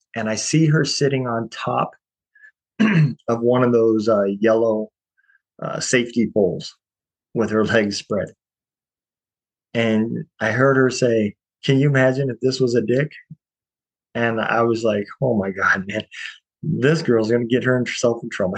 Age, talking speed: 30-49, 155 wpm